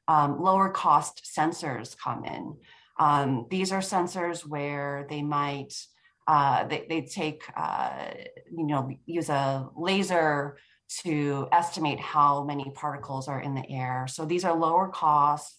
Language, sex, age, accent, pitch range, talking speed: English, female, 30-49, American, 140-165 Hz, 140 wpm